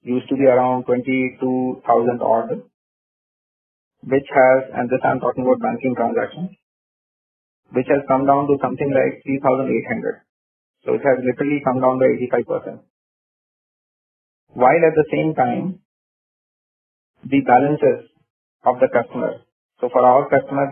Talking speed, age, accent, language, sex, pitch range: 130 wpm, 30-49, Indian, English, male, 125-140 Hz